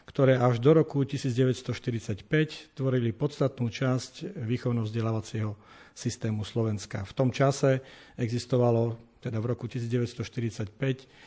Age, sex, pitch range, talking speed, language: 50-69, male, 115-135 Hz, 100 wpm, Slovak